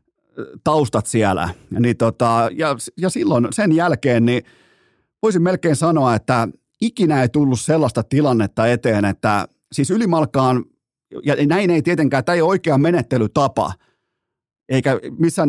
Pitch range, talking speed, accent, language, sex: 110-145 Hz, 130 wpm, native, Finnish, male